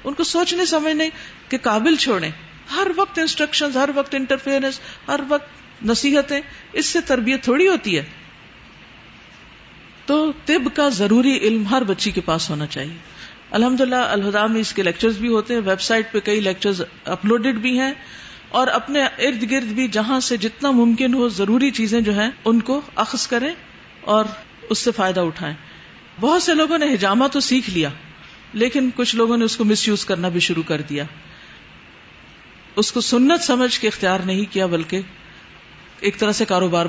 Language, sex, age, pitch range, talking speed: Urdu, female, 50-69, 190-270 Hz, 175 wpm